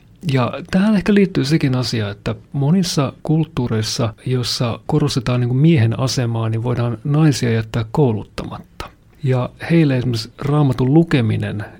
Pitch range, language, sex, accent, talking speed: 120-155 Hz, Finnish, male, native, 115 wpm